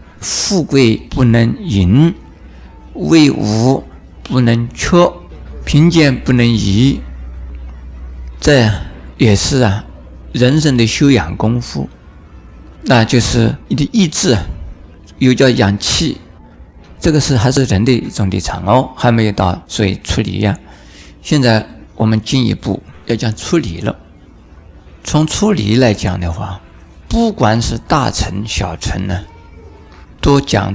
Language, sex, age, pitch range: Chinese, male, 50-69, 80-125 Hz